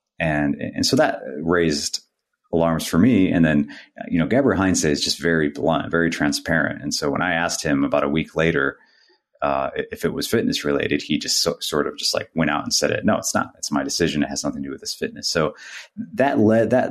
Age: 30-49